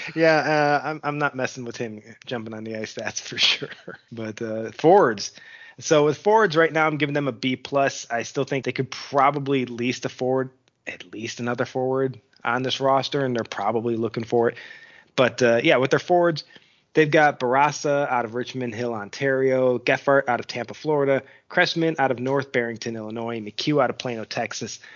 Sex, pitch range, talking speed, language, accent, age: male, 120-145 Hz, 195 wpm, English, American, 20-39